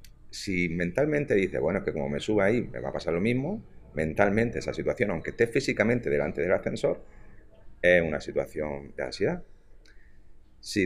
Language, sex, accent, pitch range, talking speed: Spanish, male, Spanish, 85-120 Hz, 170 wpm